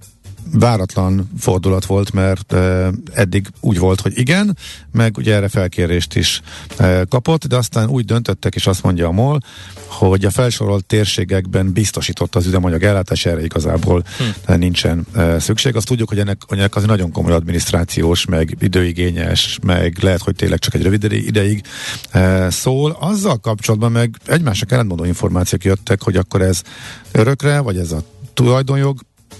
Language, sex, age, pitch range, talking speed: Hungarian, male, 50-69, 95-115 Hz, 145 wpm